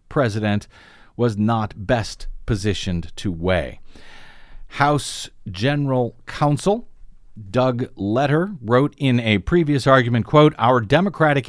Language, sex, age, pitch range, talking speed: English, male, 50-69, 110-145 Hz, 105 wpm